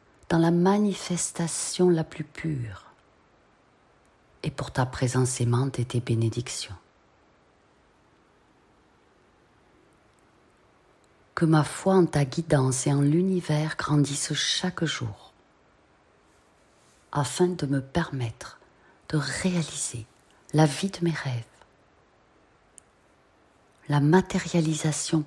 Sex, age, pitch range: female, 40-59, 115-160 Hz